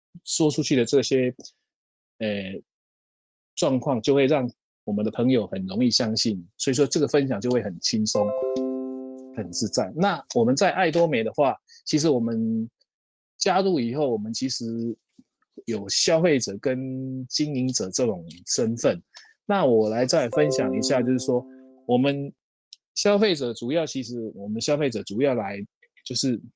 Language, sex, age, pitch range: Chinese, male, 20-39, 115-150 Hz